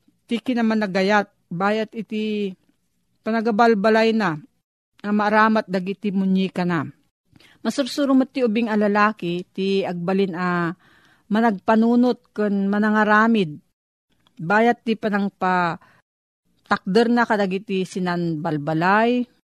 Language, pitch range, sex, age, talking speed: Filipino, 175-220 Hz, female, 40-59, 85 wpm